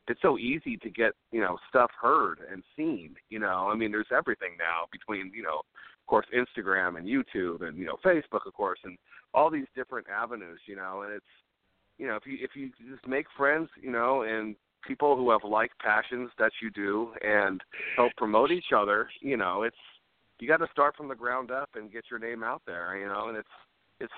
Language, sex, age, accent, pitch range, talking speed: English, male, 40-59, American, 115-150 Hz, 220 wpm